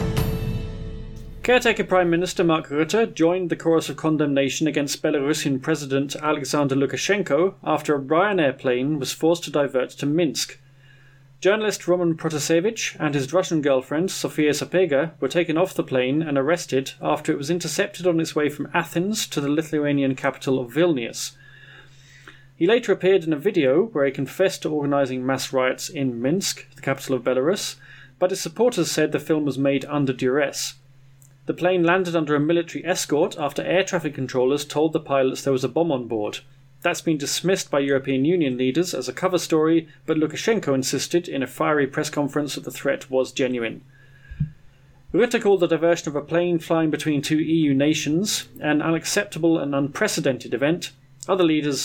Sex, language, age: male, English, 30-49